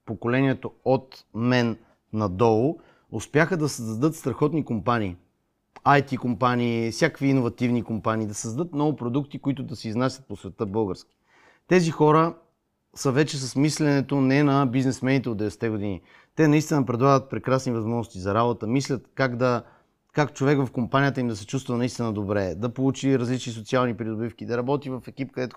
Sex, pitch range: male, 120-150 Hz